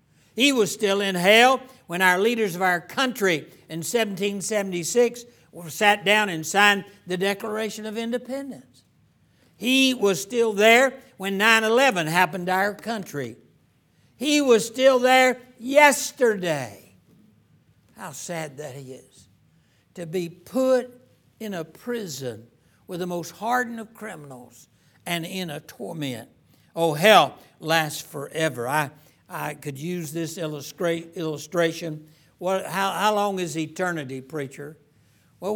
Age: 60-79